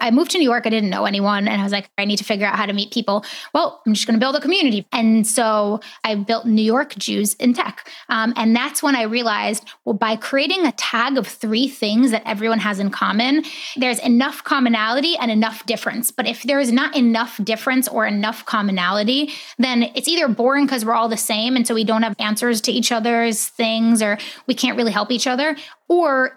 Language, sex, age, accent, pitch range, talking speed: English, female, 20-39, American, 220-265 Hz, 230 wpm